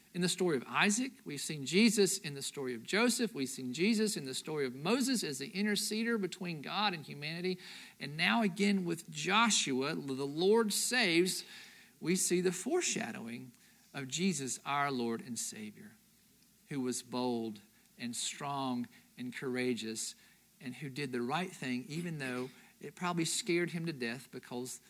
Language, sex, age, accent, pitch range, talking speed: English, male, 50-69, American, 140-215 Hz, 165 wpm